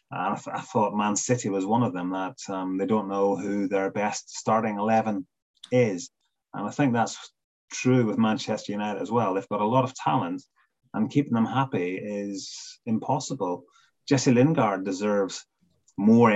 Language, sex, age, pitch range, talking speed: English, male, 30-49, 100-125 Hz, 170 wpm